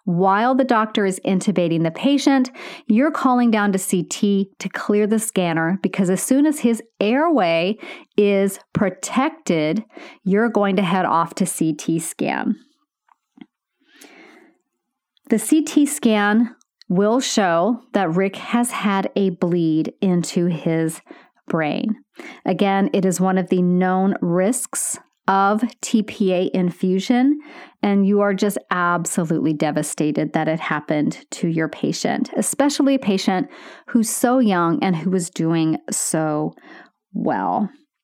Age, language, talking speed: 40-59, English, 130 wpm